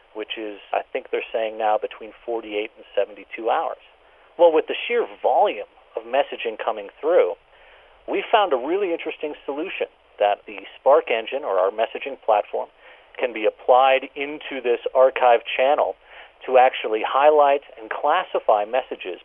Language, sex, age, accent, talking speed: English, male, 40-59, American, 150 wpm